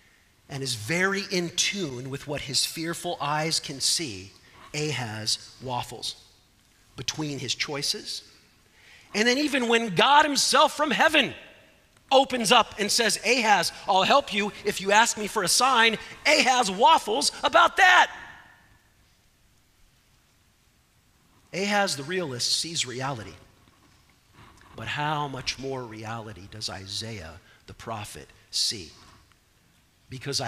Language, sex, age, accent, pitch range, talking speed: English, male, 40-59, American, 115-190 Hz, 120 wpm